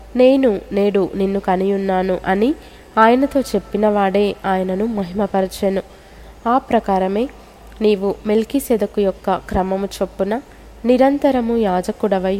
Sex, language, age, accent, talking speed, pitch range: female, Telugu, 20-39, native, 90 wpm, 195-225 Hz